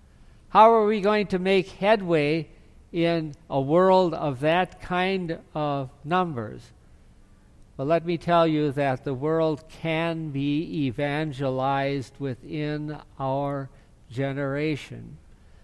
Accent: American